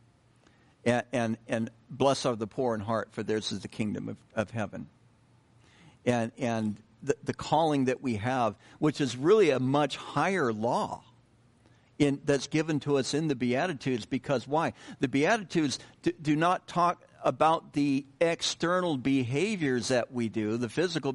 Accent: American